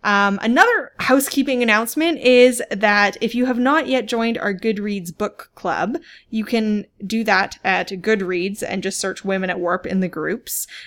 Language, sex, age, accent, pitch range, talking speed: English, female, 20-39, American, 190-250 Hz, 170 wpm